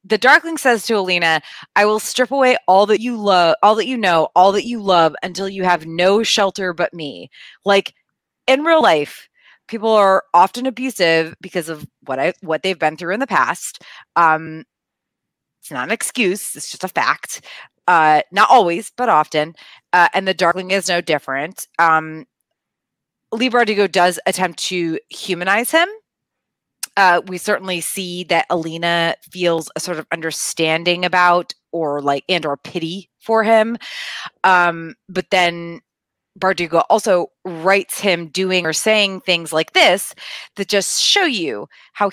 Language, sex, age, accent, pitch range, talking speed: English, female, 20-39, American, 170-205 Hz, 160 wpm